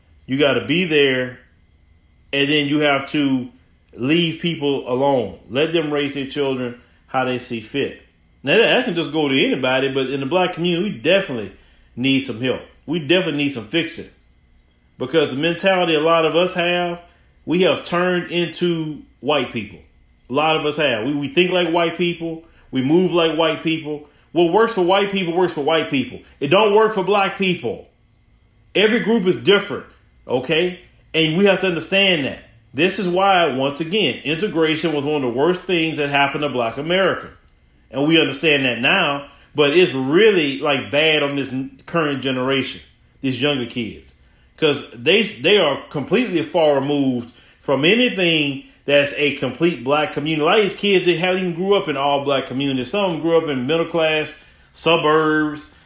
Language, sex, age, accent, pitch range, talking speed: English, male, 30-49, American, 130-175 Hz, 180 wpm